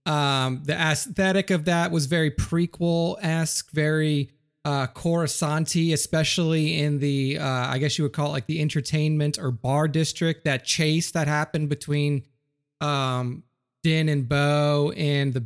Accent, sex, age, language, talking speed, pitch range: American, male, 30-49, English, 150 wpm, 140-160 Hz